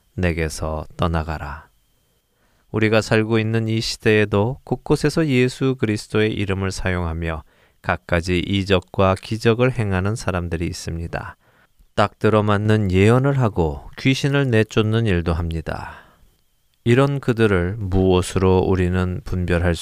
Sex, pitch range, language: male, 85-110 Hz, Korean